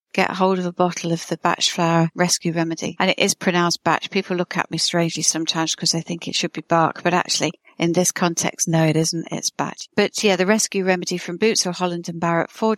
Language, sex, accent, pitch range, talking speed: English, female, British, 170-190 Hz, 240 wpm